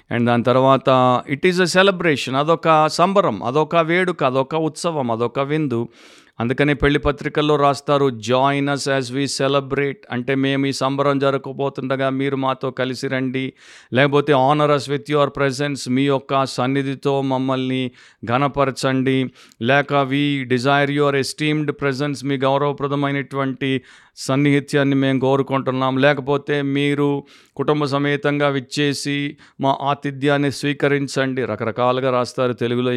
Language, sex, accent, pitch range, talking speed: Telugu, male, native, 130-150 Hz, 115 wpm